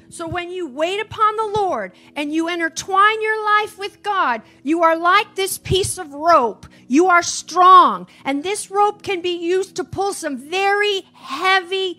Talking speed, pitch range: 175 wpm, 330-395 Hz